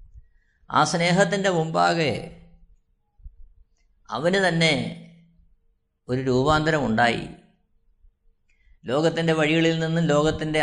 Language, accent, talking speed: Malayalam, native, 60 wpm